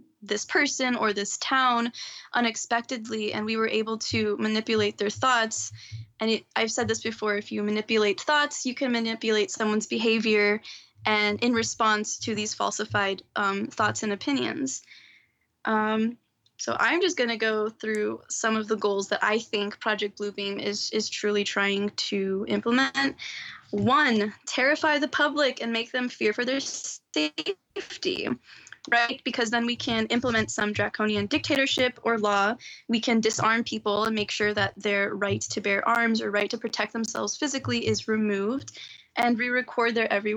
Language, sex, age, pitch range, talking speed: English, female, 10-29, 210-250 Hz, 160 wpm